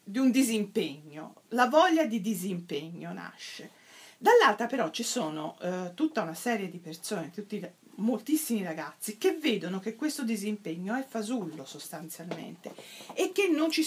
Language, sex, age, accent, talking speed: Italian, female, 40-59, native, 135 wpm